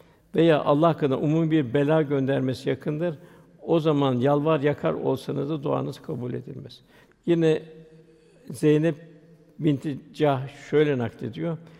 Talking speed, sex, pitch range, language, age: 115 wpm, male, 140-160 Hz, Turkish, 60-79